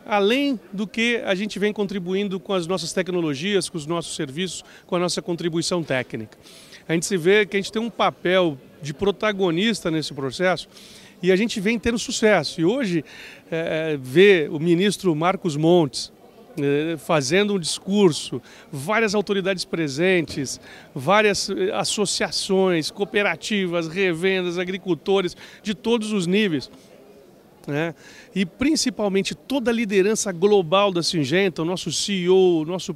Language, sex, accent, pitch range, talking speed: Portuguese, male, Brazilian, 155-195 Hz, 140 wpm